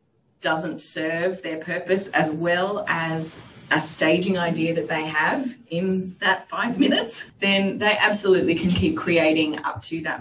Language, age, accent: English, 20-39, Australian